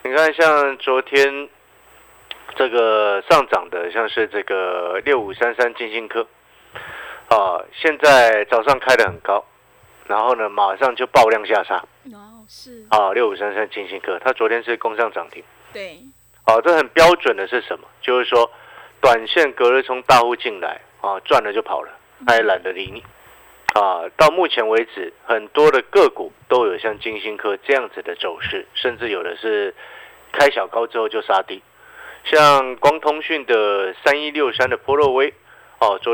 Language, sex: Chinese, male